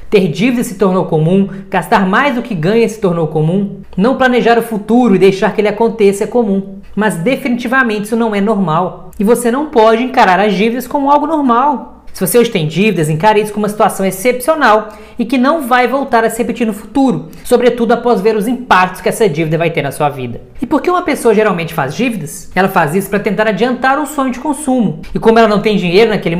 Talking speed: 225 wpm